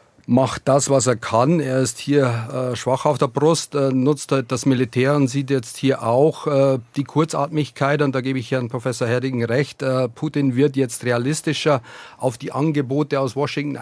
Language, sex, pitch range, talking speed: German, male, 130-155 Hz, 185 wpm